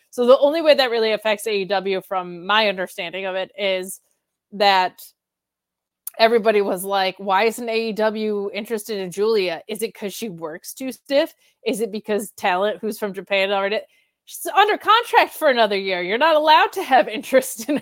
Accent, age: American, 20-39